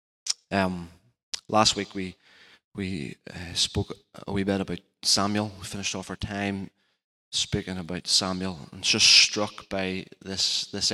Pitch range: 95-100 Hz